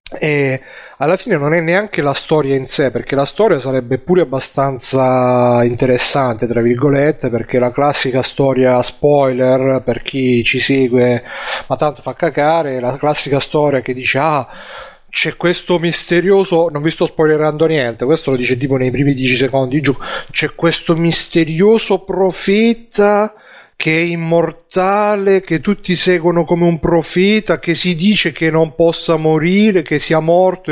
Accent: native